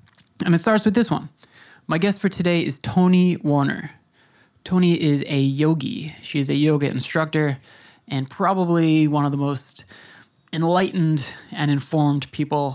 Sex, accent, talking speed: male, American, 150 wpm